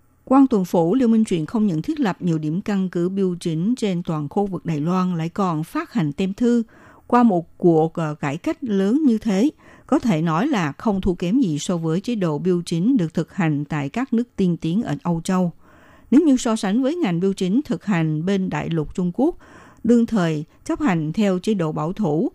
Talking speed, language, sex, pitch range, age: 230 wpm, Vietnamese, female, 165-220 Hz, 60-79